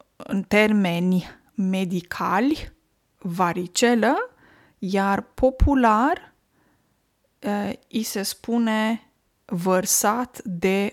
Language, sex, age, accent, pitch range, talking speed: Romanian, female, 20-39, native, 195-250 Hz, 60 wpm